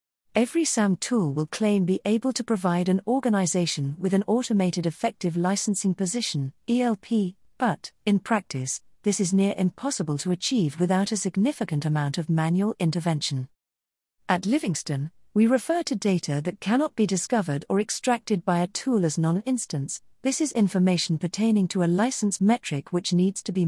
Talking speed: 160 wpm